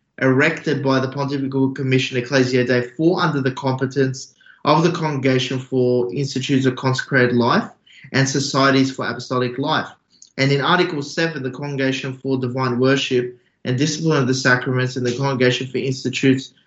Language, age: English, 20-39